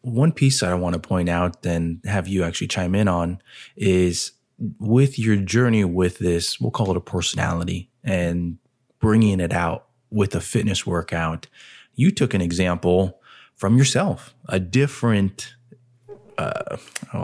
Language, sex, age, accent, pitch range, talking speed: English, male, 20-39, American, 85-105 Hz, 145 wpm